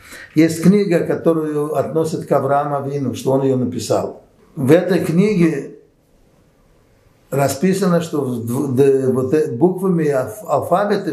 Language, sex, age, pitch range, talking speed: Russian, male, 60-79, 140-185 Hz, 95 wpm